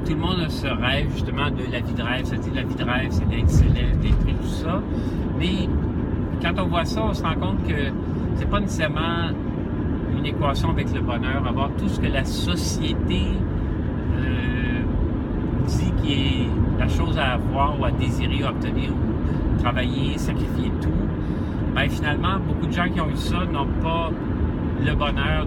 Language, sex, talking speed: French, male, 185 wpm